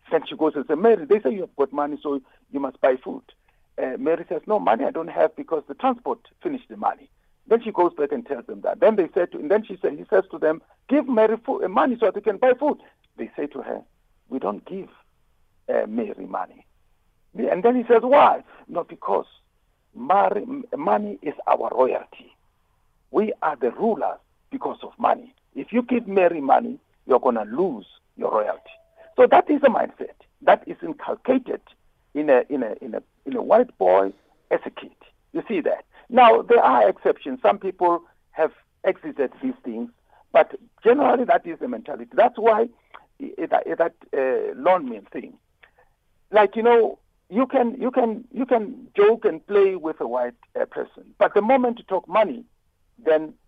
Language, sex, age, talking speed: English, male, 50-69, 190 wpm